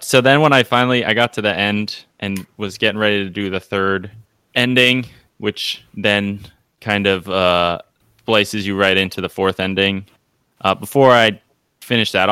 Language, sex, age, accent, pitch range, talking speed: English, male, 20-39, American, 95-115 Hz, 175 wpm